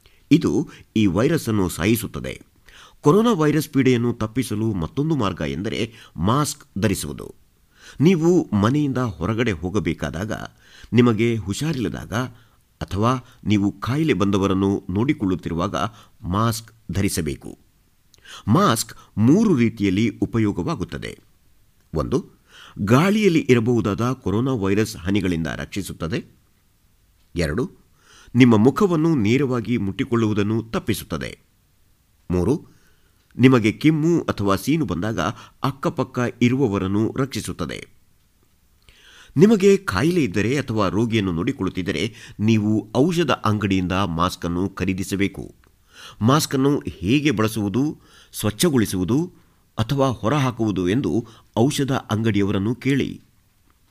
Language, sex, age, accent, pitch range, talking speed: Kannada, male, 50-69, native, 95-130 Hz, 80 wpm